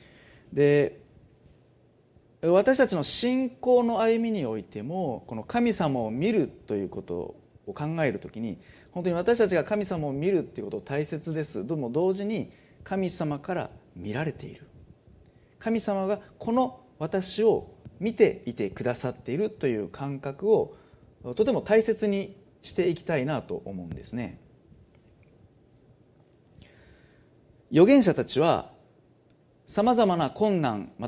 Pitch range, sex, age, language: 140-210 Hz, male, 30-49, Japanese